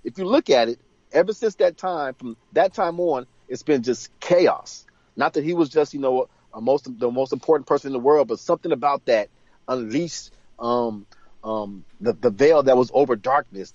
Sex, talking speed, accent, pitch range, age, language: male, 210 wpm, American, 125-180 Hz, 40-59, English